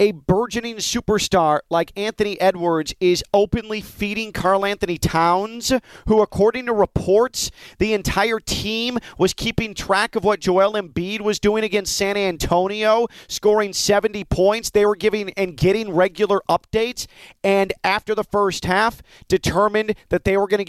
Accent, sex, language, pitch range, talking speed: American, male, English, 175-215 Hz, 150 wpm